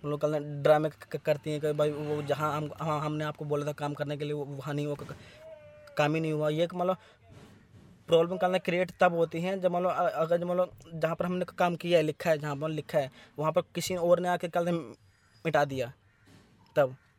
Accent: native